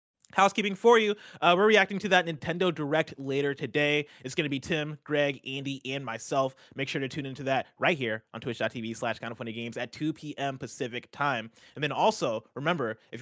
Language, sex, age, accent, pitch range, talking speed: English, male, 20-39, American, 125-165 Hz, 210 wpm